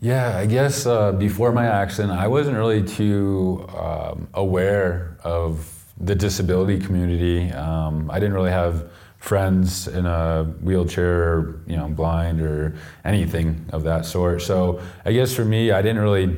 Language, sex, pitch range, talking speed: English, male, 85-100 Hz, 155 wpm